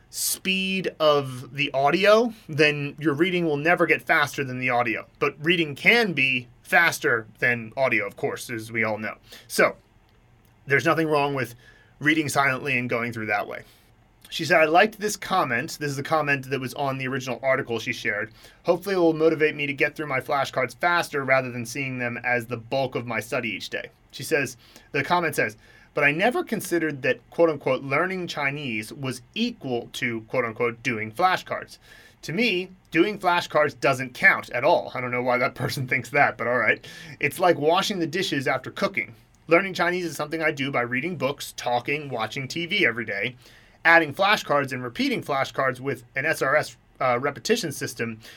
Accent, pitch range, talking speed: American, 125-165 Hz, 185 wpm